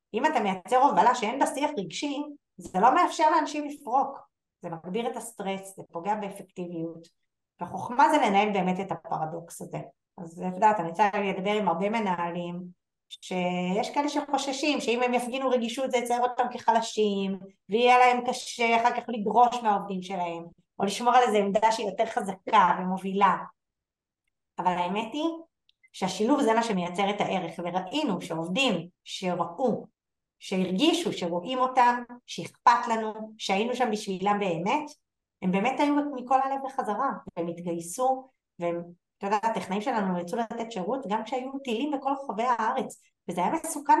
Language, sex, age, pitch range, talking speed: Hebrew, female, 30-49, 190-270 Hz, 145 wpm